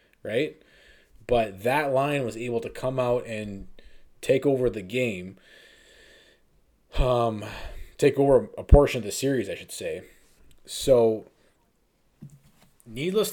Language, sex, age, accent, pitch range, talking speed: English, male, 20-39, American, 115-145 Hz, 120 wpm